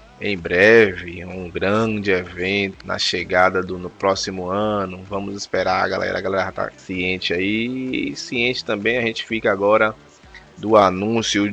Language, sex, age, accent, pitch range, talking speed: Portuguese, male, 20-39, Brazilian, 100-110 Hz, 140 wpm